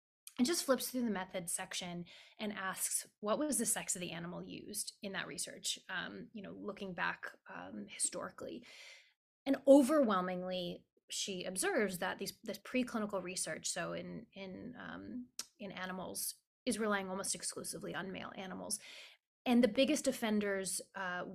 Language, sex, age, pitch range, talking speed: English, female, 20-39, 185-245 Hz, 150 wpm